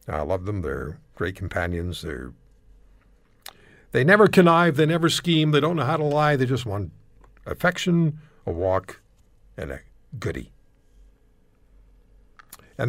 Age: 60-79